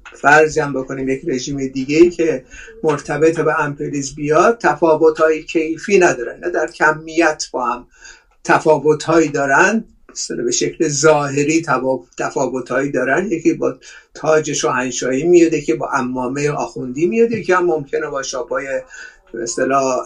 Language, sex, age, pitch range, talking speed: Persian, male, 50-69, 140-195 Hz, 140 wpm